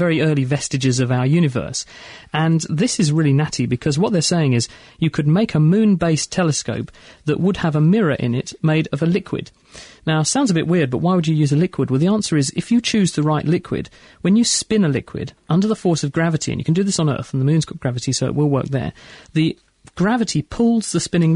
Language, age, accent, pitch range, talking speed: English, 40-59, British, 135-175 Hz, 245 wpm